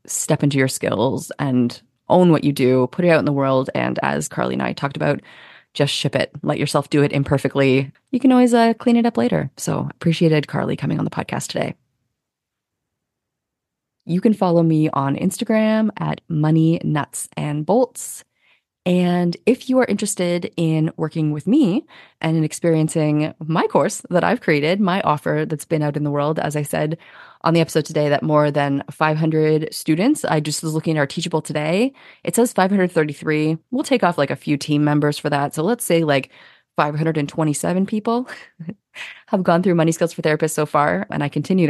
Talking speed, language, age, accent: 190 wpm, English, 20-39, American